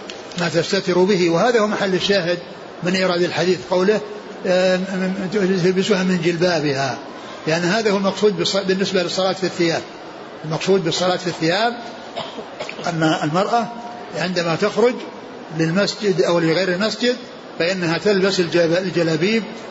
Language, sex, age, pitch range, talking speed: Arabic, male, 60-79, 170-205 Hz, 115 wpm